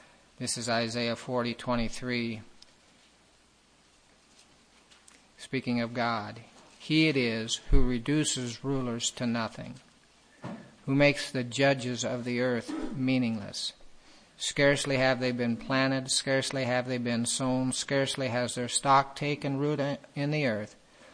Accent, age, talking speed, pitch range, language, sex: American, 50-69, 125 wpm, 120-130 Hz, English, male